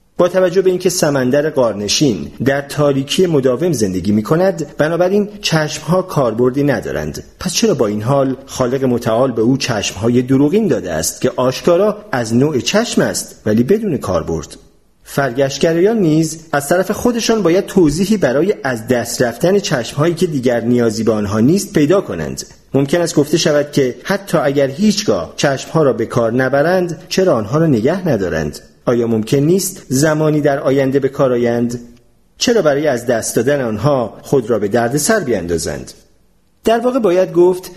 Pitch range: 120-170 Hz